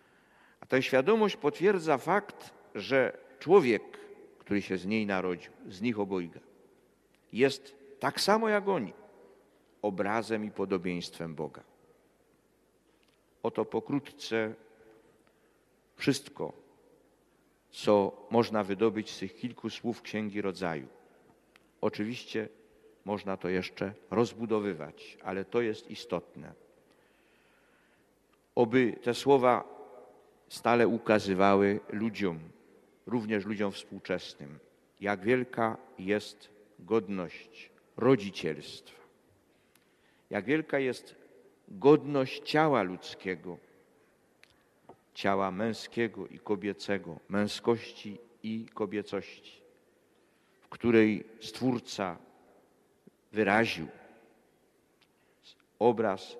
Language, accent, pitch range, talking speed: Polish, native, 100-125 Hz, 80 wpm